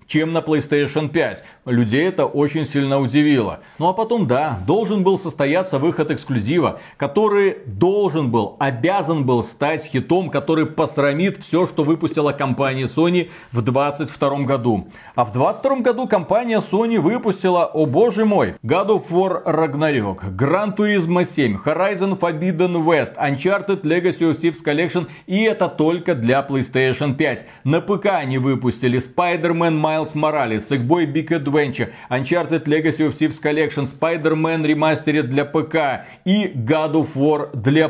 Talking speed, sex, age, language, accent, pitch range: 145 wpm, male, 40-59, Russian, native, 145-190 Hz